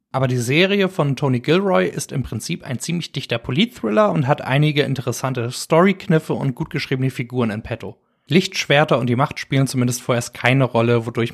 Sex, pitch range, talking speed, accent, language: male, 120-150 Hz, 180 wpm, German, German